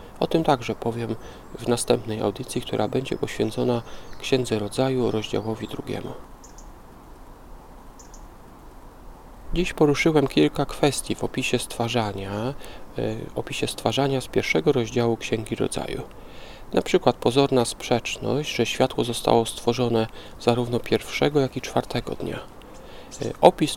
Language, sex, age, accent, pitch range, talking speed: Polish, male, 40-59, native, 110-140 Hz, 105 wpm